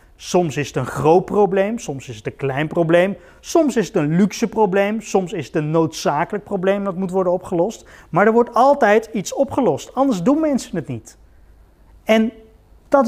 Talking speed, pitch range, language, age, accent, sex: 190 wpm, 165-240 Hz, Dutch, 30-49, Dutch, male